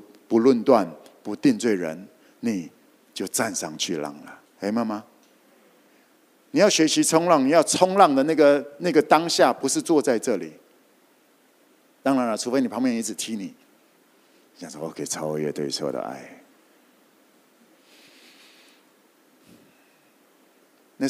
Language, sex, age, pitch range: Chinese, male, 50-69, 110-150 Hz